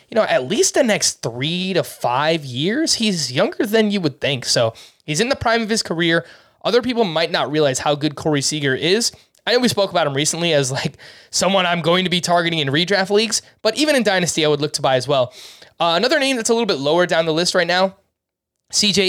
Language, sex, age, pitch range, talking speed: English, male, 20-39, 145-180 Hz, 240 wpm